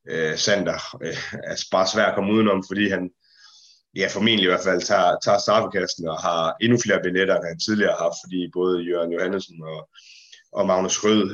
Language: Danish